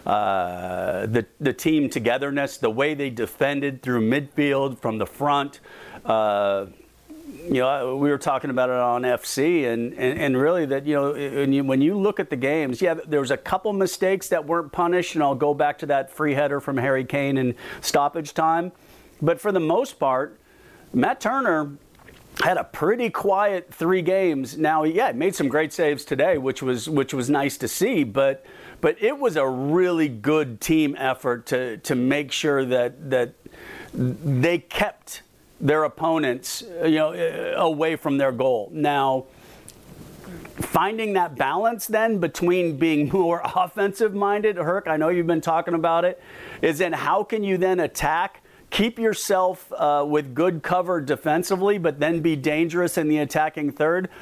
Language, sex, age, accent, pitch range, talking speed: English, male, 50-69, American, 140-185 Hz, 170 wpm